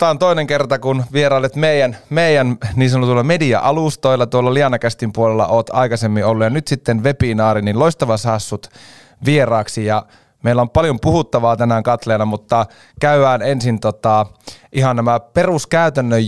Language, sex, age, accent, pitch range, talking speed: Finnish, male, 30-49, native, 110-135 Hz, 150 wpm